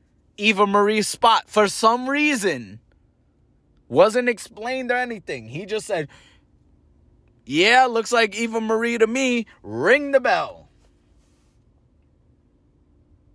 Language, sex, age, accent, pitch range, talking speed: English, male, 30-49, American, 120-195 Hz, 105 wpm